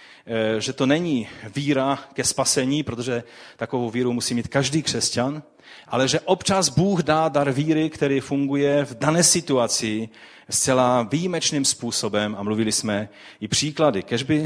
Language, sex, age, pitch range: Czech, male, 30-49, 110-140 Hz